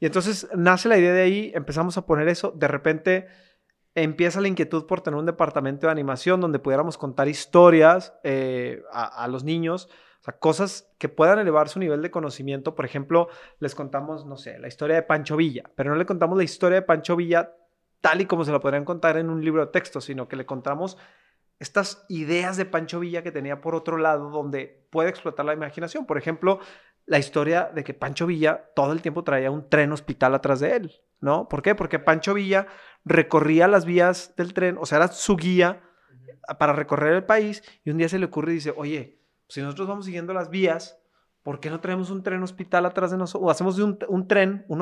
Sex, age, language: male, 30-49, French